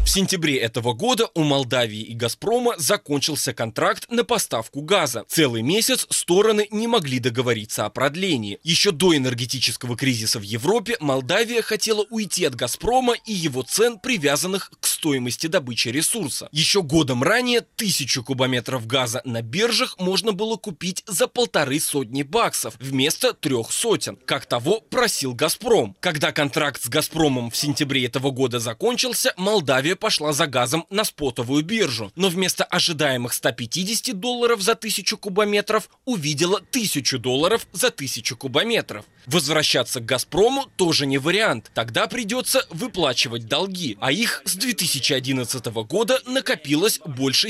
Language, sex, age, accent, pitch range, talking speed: Russian, male, 20-39, native, 130-215 Hz, 140 wpm